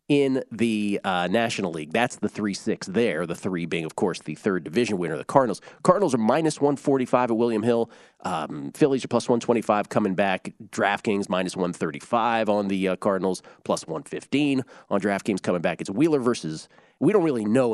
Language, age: English, 40-59